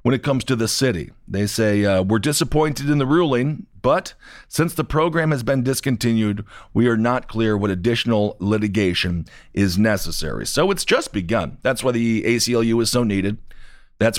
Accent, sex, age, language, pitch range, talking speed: American, male, 40-59, English, 105-145 Hz, 180 wpm